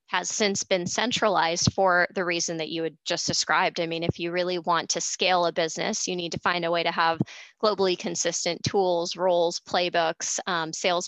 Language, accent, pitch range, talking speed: English, American, 170-195 Hz, 200 wpm